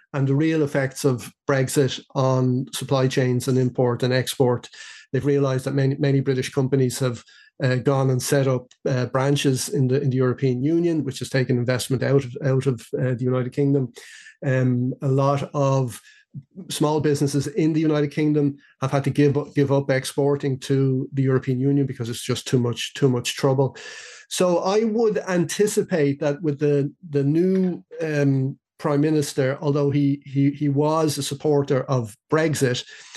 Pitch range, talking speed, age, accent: 130-145 Hz, 175 wpm, 30-49, Irish